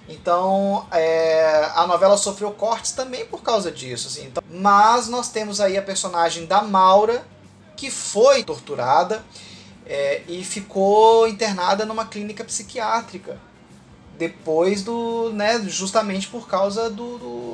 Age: 20-39